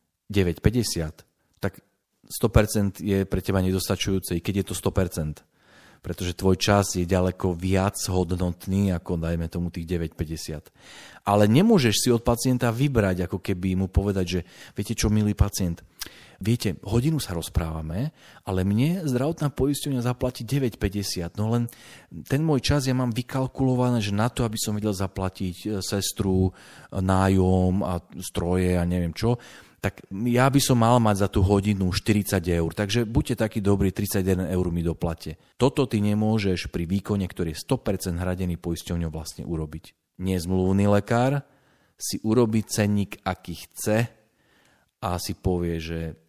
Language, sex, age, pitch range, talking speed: Slovak, male, 40-59, 90-115 Hz, 145 wpm